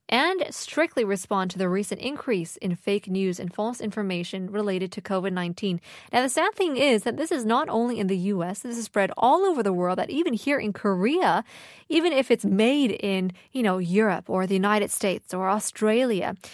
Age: 20-39